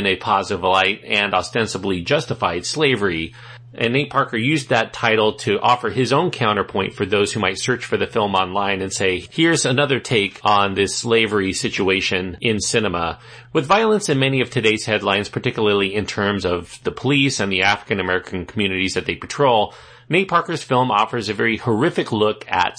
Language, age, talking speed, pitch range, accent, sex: English, 40-59, 175 wpm, 100-135 Hz, American, male